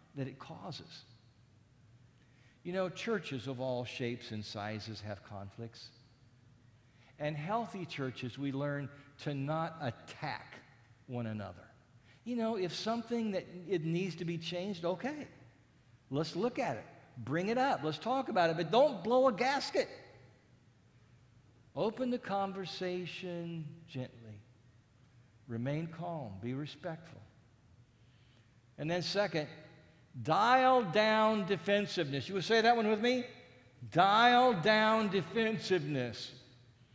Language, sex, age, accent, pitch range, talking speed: English, male, 50-69, American, 120-185 Hz, 120 wpm